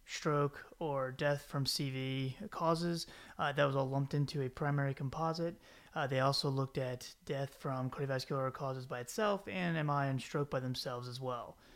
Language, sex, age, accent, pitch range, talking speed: English, male, 30-49, American, 135-155 Hz, 175 wpm